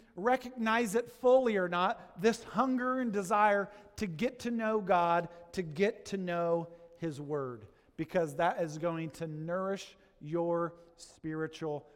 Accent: American